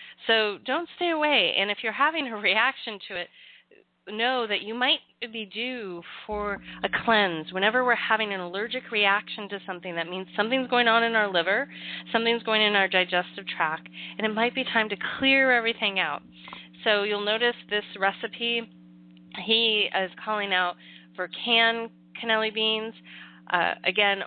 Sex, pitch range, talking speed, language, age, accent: female, 185-230 Hz, 165 wpm, English, 30-49, American